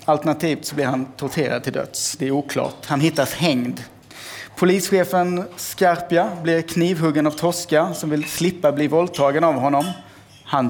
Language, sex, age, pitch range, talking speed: Swedish, male, 30-49, 140-180 Hz, 150 wpm